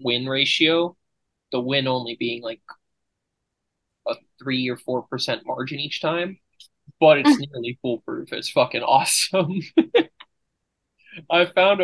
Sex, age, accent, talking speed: male, 20-39, American, 120 wpm